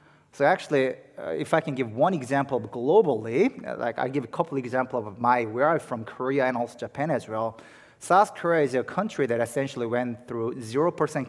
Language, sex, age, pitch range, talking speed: English, male, 30-49, 120-165 Hz, 195 wpm